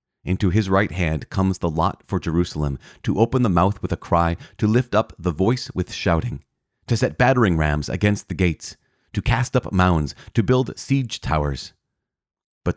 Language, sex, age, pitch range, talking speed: English, male, 40-59, 85-110 Hz, 185 wpm